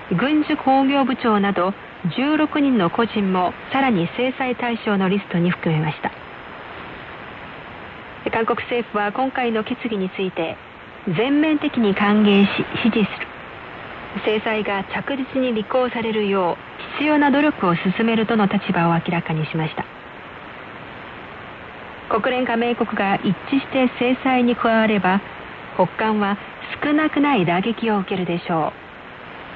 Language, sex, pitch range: Korean, female, 190-255 Hz